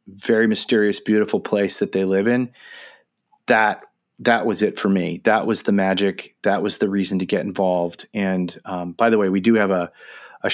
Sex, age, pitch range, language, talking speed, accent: male, 30-49, 95-110 Hz, English, 200 wpm, American